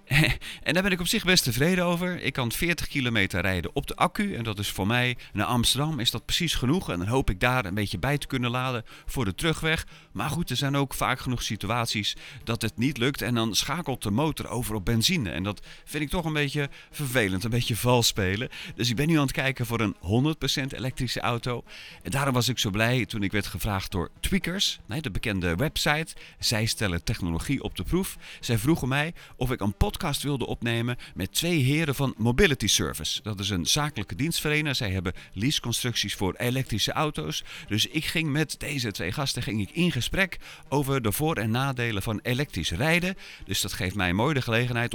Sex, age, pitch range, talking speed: male, 40-59, 105-145 Hz, 210 wpm